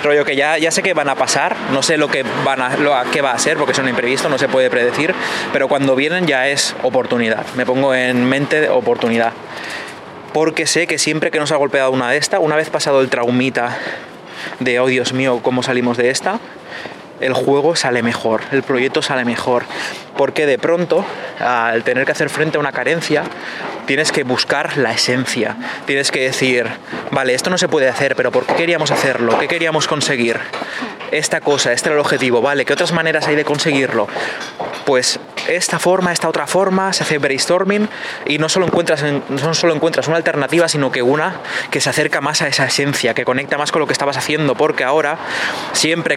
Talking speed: 200 wpm